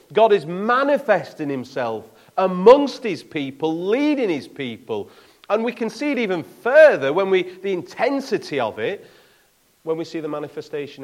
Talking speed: 150 wpm